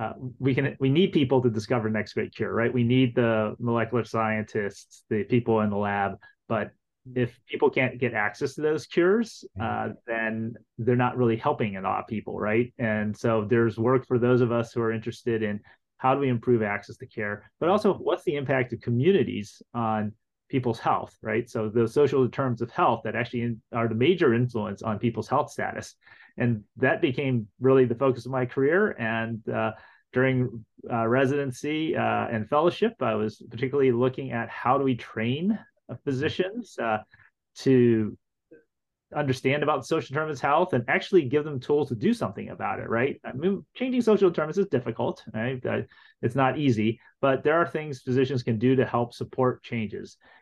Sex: male